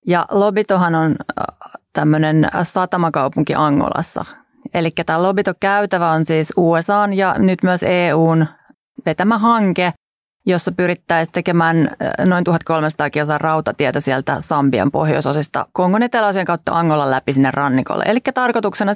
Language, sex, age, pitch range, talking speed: Finnish, female, 30-49, 160-195 Hz, 115 wpm